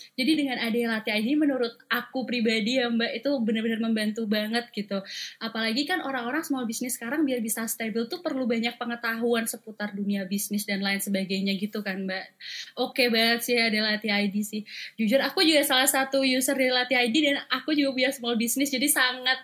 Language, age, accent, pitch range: Indonesian, 20-39, native, 225-275 Hz